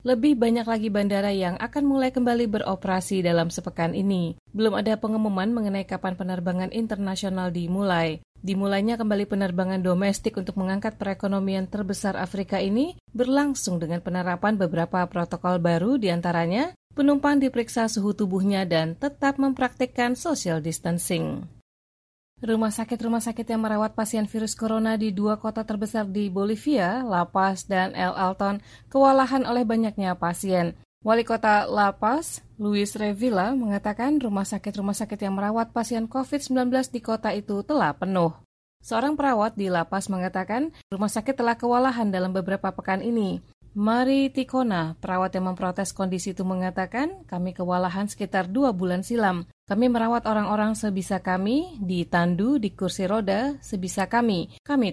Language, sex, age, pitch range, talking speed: Indonesian, female, 30-49, 185-230 Hz, 140 wpm